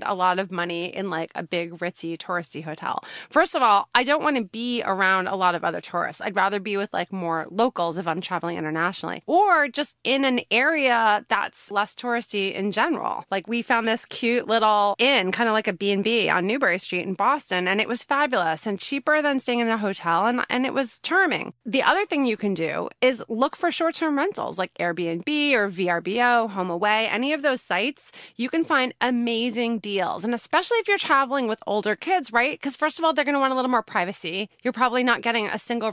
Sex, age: female, 30-49